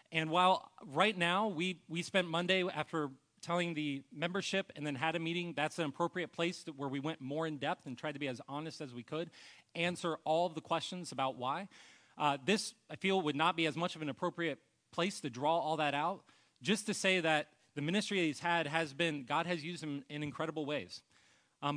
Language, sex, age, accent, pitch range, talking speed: English, male, 30-49, American, 145-175 Hz, 225 wpm